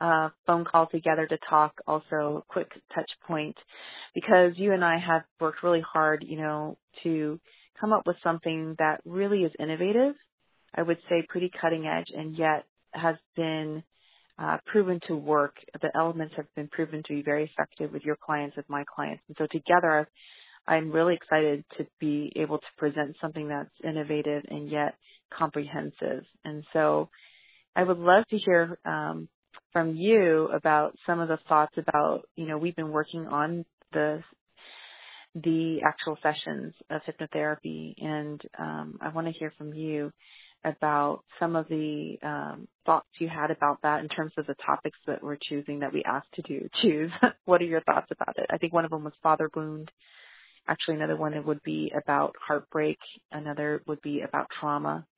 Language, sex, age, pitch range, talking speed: English, female, 30-49, 150-165 Hz, 175 wpm